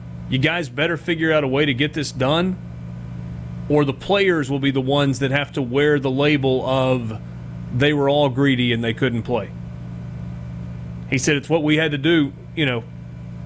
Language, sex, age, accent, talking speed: English, male, 30-49, American, 190 wpm